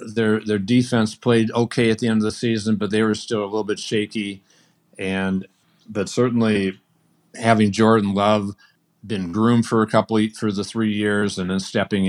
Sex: male